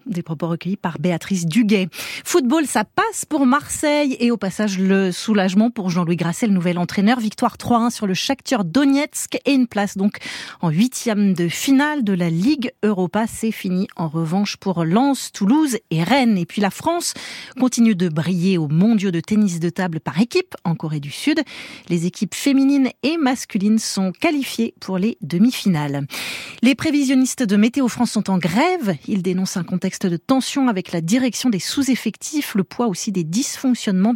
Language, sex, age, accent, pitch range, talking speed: French, female, 30-49, French, 185-255 Hz, 180 wpm